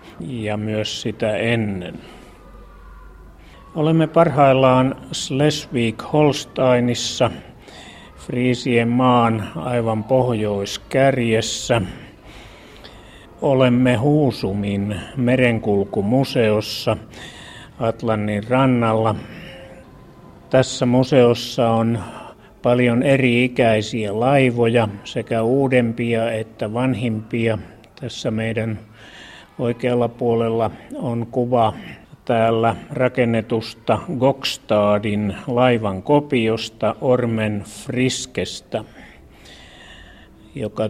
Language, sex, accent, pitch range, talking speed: Finnish, male, native, 110-125 Hz, 60 wpm